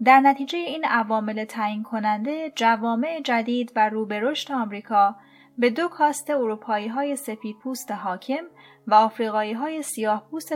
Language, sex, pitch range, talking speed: Persian, female, 205-275 Hz, 130 wpm